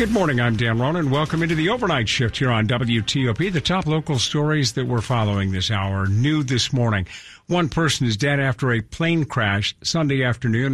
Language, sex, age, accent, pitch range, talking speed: English, male, 50-69, American, 115-150 Hz, 205 wpm